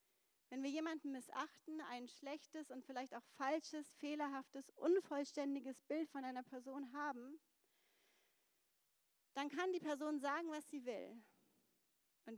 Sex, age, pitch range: female, 40-59, 265-330 Hz